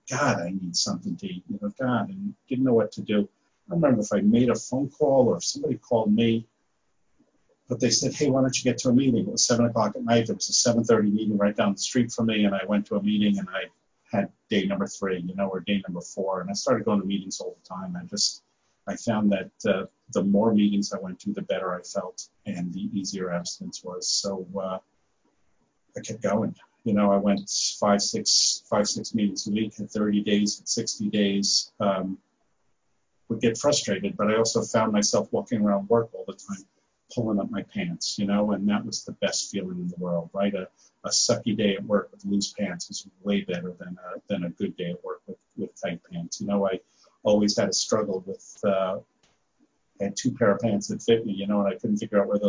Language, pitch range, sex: English, 100-115 Hz, male